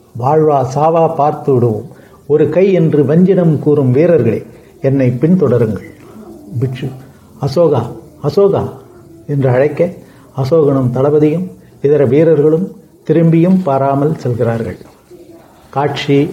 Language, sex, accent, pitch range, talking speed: Tamil, male, native, 135-160 Hz, 90 wpm